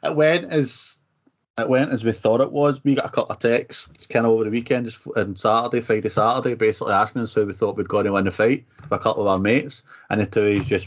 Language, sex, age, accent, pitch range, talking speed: English, male, 30-49, British, 95-140 Hz, 270 wpm